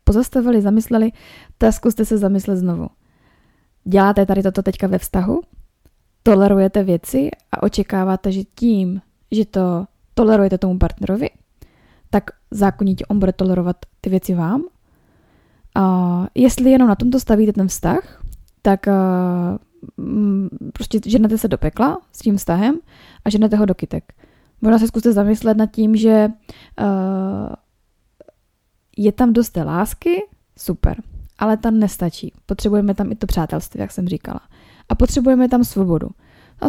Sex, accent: female, native